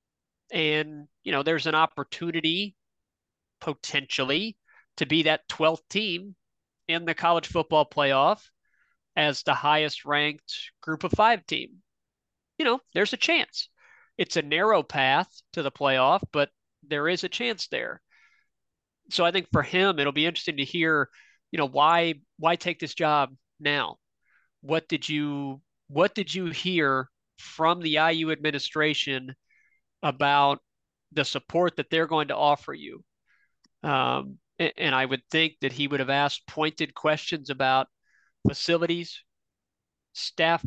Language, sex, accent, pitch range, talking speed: English, male, American, 140-170 Hz, 145 wpm